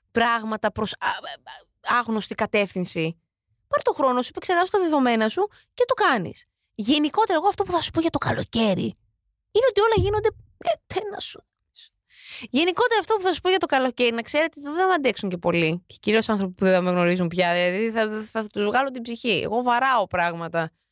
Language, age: Greek, 20-39